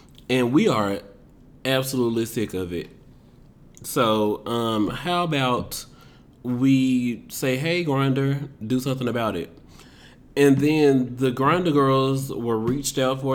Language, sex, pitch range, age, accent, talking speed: English, male, 110-130 Hz, 30-49, American, 125 wpm